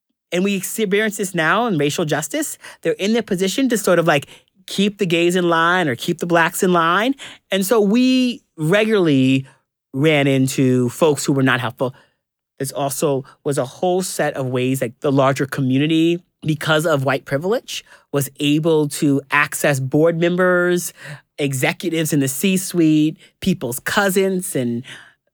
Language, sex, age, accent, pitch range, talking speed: English, male, 30-49, American, 135-175 Hz, 160 wpm